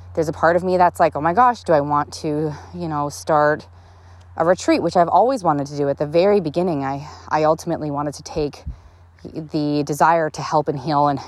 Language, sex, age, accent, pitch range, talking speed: English, female, 20-39, American, 135-155 Hz, 225 wpm